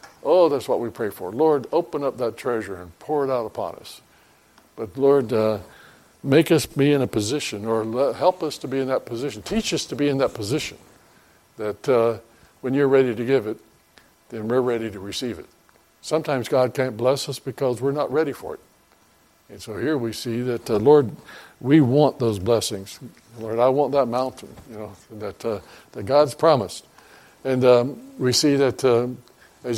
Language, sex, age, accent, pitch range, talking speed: English, male, 60-79, American, 115-140 Hz, 200 wpm